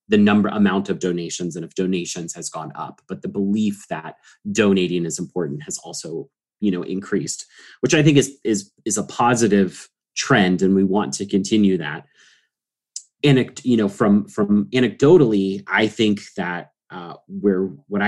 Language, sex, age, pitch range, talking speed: English, male, 30-49, 95-110 Hz, 165 wpm